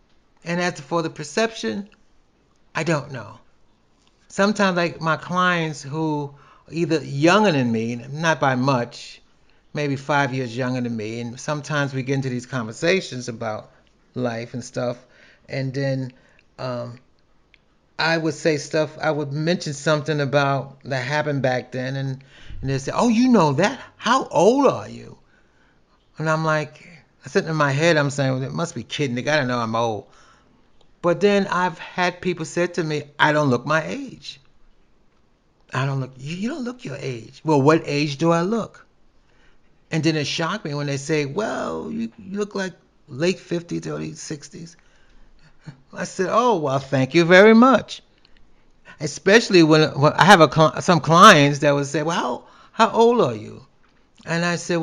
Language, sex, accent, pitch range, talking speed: English, male, American, 135-175 Hz, 170 wpm